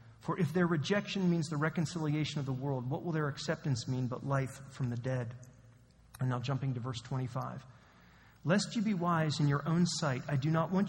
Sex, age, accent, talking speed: male, 40-59, American, 210 wpm